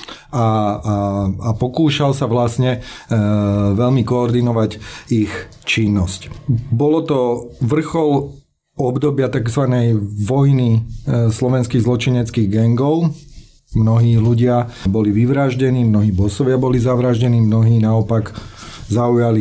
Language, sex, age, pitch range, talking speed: Slovak, male, 30-49, 110-130 Hz, 95 wpm